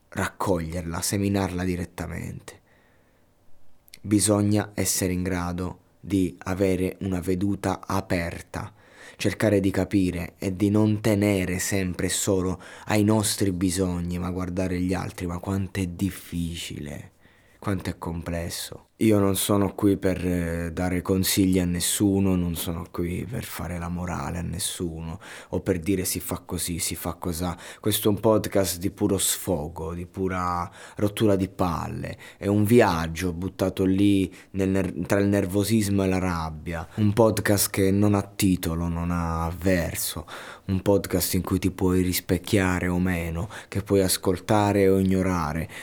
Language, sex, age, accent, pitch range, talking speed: Italian, male, 20-39, native, 90-100 Hz, 145 wpm